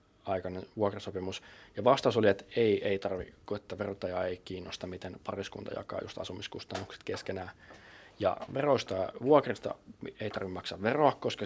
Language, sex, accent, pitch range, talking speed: Finnish, male, native, 95-105 Hz, 140 wpm